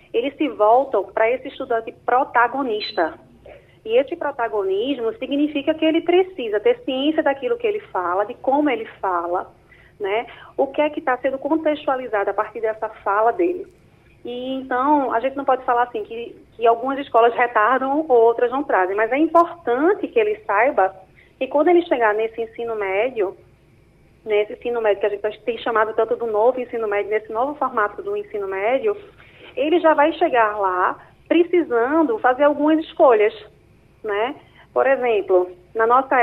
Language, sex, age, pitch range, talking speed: Portuguese, female, 30-49, 225-300 Hz, 160 wpm